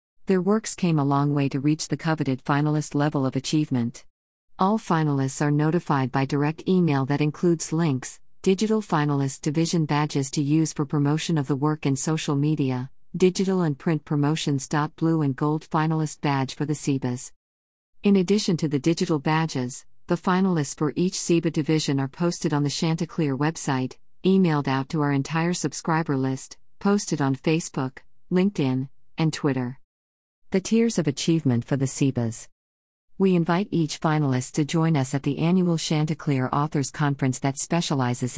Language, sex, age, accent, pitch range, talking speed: English, female, 50-69, American, 135-165 Hz, 160 wpm